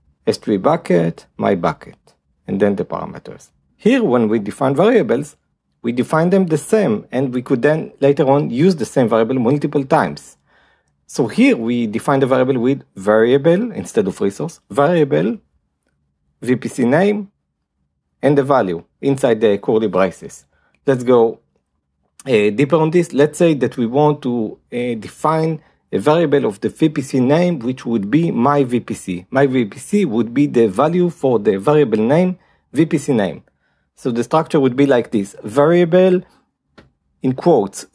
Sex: male